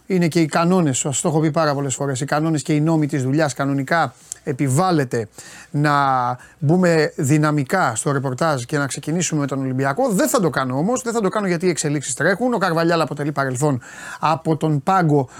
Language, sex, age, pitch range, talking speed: Greek, male, 30-49, 145-175 Hz, 200 wpm